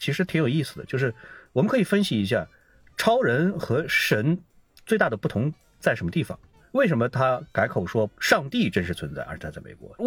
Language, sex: Chinese, male